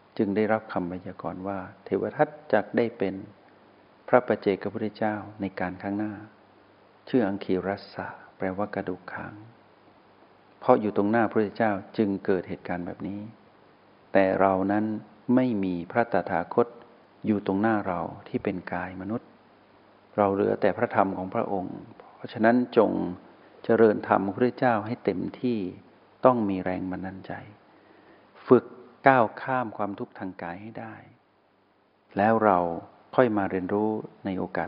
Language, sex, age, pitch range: Thai, male, 60-79, 95-110 Hz